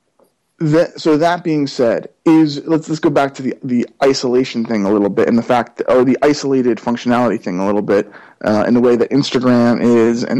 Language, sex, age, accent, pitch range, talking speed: English, male, 20-39, American, 125-155 Hz, 220 wpm